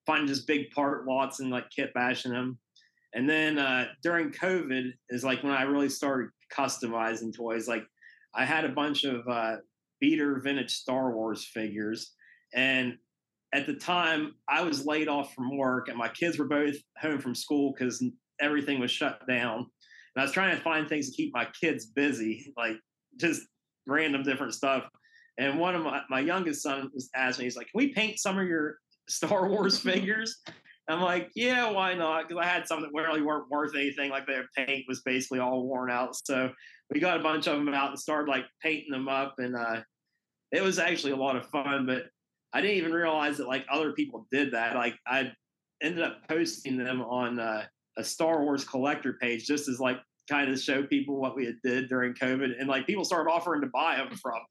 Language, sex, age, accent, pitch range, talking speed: English, male, 30-49, American, 125-160 Hz, 205 wpm